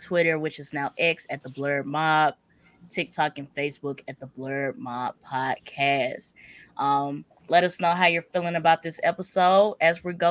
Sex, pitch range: female, 150-185 Hz